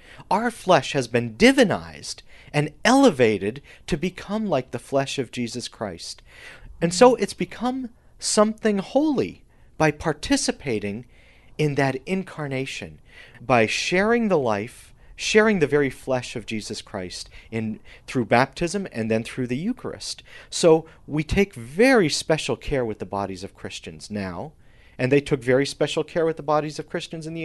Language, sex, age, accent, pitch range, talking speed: English, male, 40-59, American, 115-175 Hz, 155 wpm